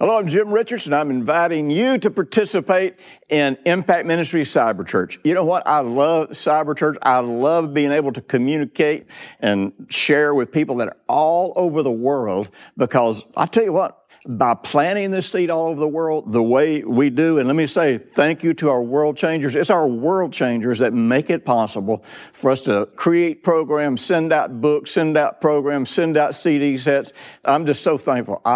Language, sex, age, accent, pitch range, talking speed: English, male, 60-79, American, 130-165 Hz, 190 wpm